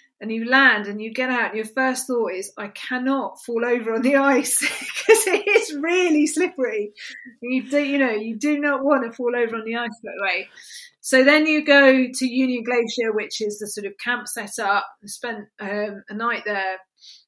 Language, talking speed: English, 215 wpm